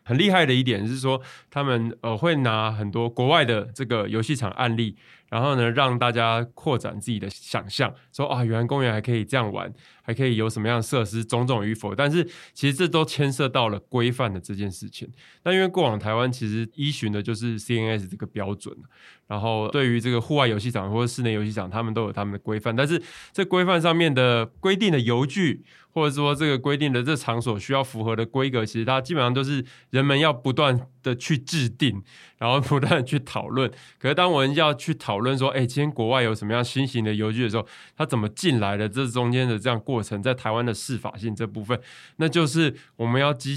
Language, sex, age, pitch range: Chinese, male, 20-39, 115-140 Hz